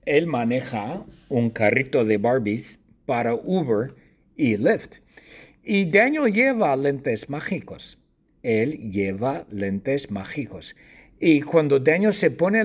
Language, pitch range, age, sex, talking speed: English, 110-165 Hz, 50-69, male, 115 wpm